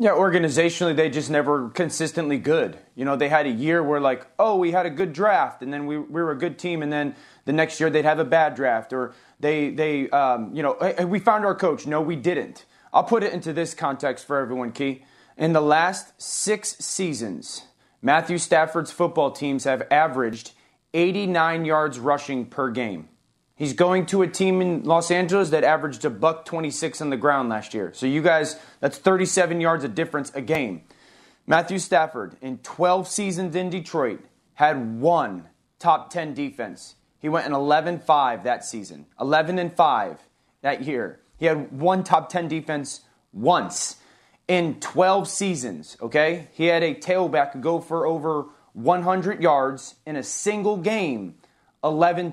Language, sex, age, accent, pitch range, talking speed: English, male, 30-49, American, 145-175 Hz, 175 wpm